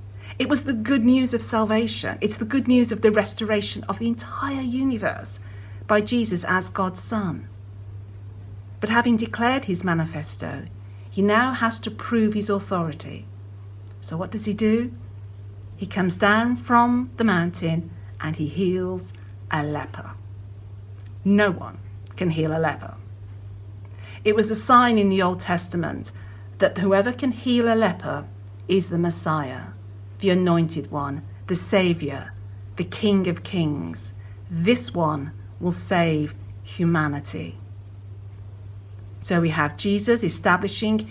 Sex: female